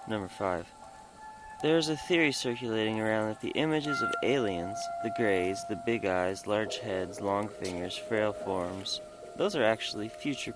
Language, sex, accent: English, male, American